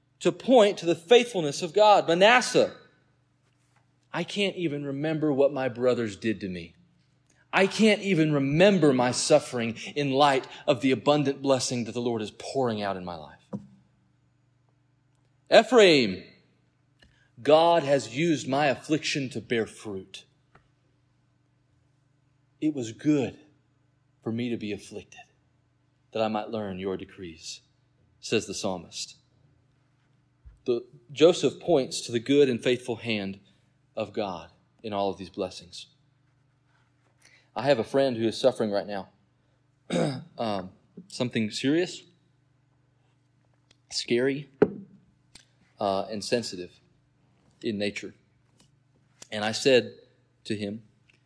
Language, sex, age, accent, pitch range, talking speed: English, male, 30-49, American, 110-140 Hz, 120 wpm